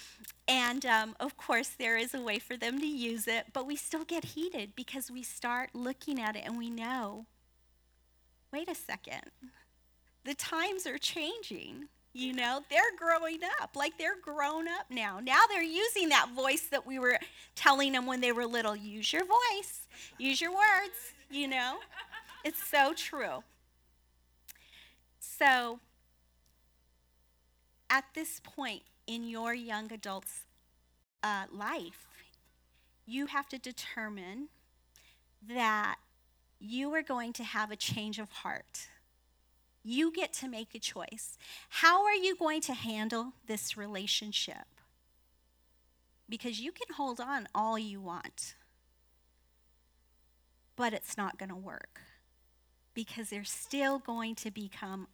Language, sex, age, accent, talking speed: English, female, 40-59, American, 140 wpm